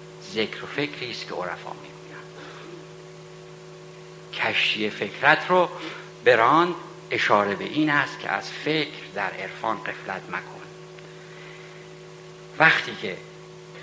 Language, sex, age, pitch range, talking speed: Persian, male, 60-79, 115-185 Hz, 100 wpm